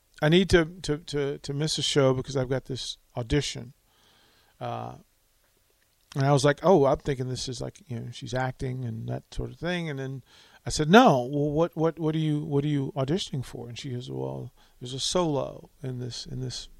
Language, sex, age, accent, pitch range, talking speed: English, male, 40-59, American, 130-190 Hz, 220 wpm